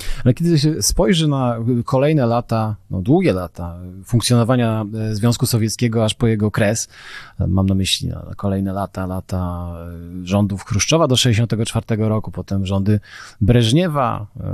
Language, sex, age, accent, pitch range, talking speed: Polish, male, 30-49, native, 105-125 Hz, 130 wpm